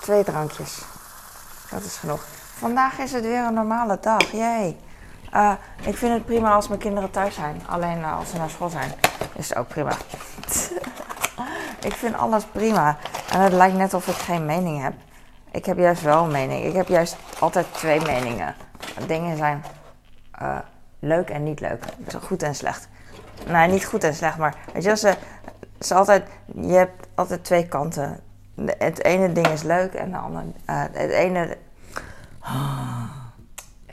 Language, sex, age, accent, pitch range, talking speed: Dutch, female, 20-39, Dutch, 140-190 Hz, 175 wpm